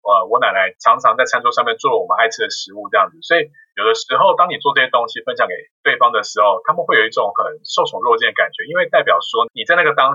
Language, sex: Chinese, male